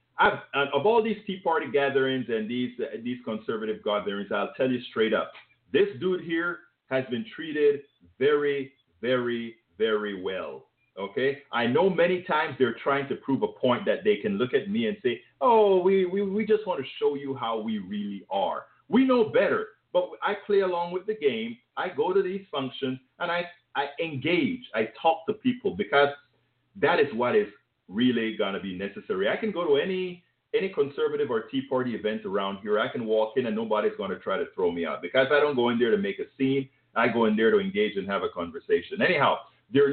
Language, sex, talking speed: English, male, 215 wpm